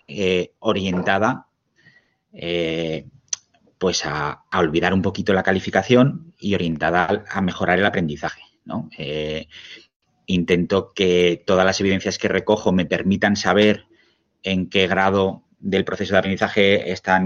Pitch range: 90-100 Hz